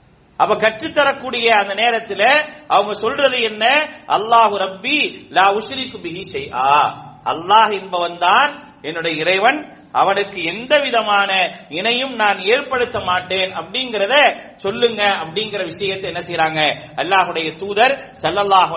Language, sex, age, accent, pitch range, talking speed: English, male, 40-59, Indian, 185-255 Hz, 95 wpm